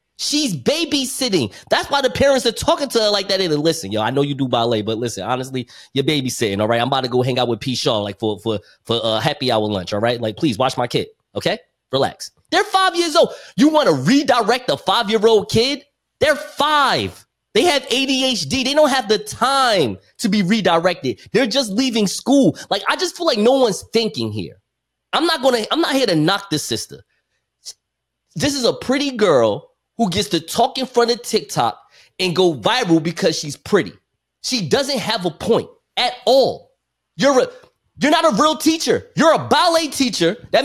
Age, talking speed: 20-39, 205 wpm